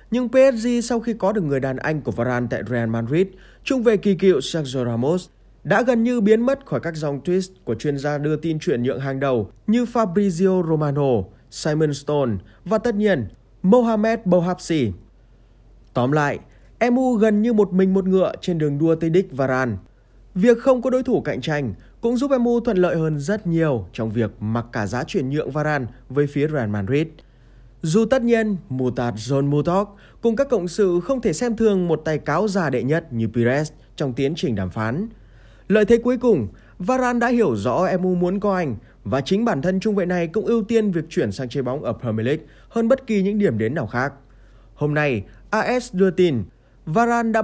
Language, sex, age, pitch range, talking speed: Vietnamese, male, 20-39, 125-210 Hz, 205 wpm